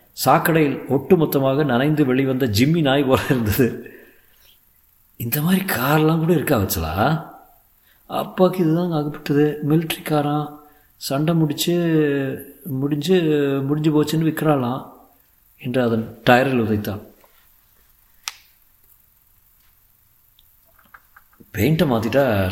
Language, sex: Tamil, male